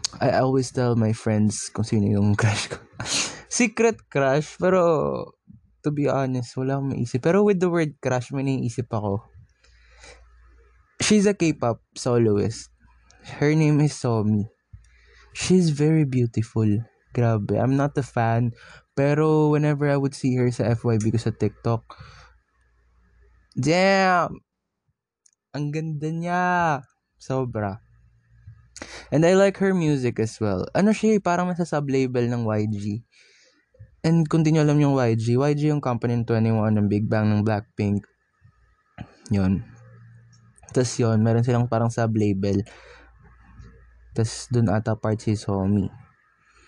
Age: 20-39